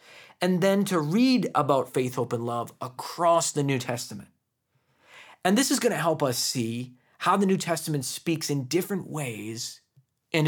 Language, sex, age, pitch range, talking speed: English, male, 20-39, 125-175 Hz, 170 wpm